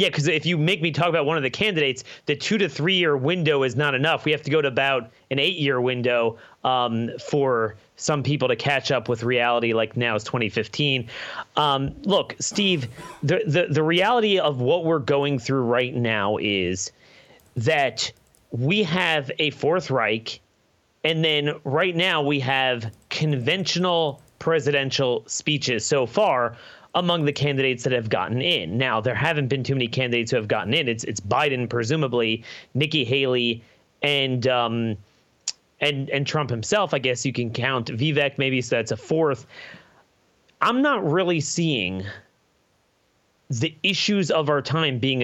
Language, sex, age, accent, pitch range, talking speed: English, male, 30-49, American, 120-165 Hz, 170 wpm